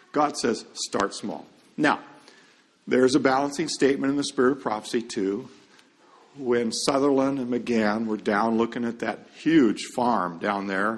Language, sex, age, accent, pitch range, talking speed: English, male, 50-69, American, 110-145 Hz, 155 wpm